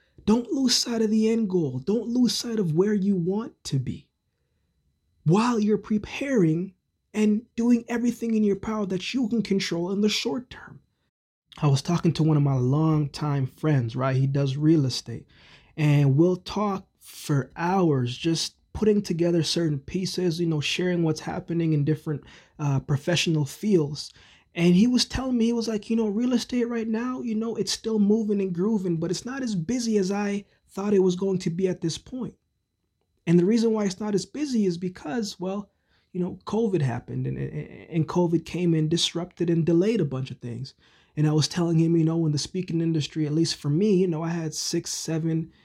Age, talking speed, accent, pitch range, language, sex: 20-39, 200 wpm, American, 155-210 Hz, English, male